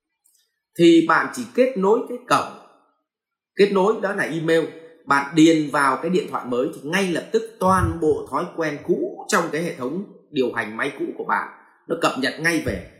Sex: male